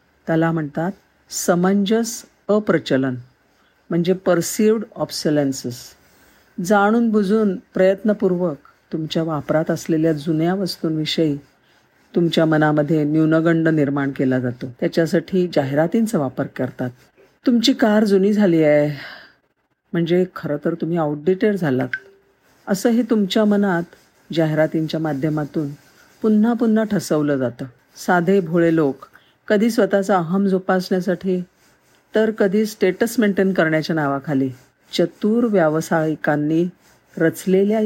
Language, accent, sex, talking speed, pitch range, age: Marathi, native, female, 75 wpm, 150-195 Hz, 50-69